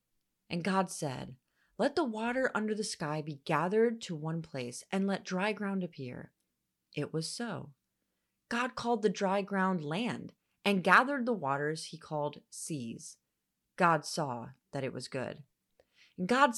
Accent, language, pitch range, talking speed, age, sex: American, English, 155-210 Hz, 150 wpm, 30-49, female